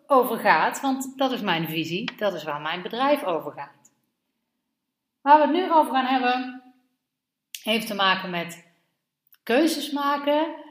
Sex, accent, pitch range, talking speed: female, Dutch, 180-260 Hz, 140 wpm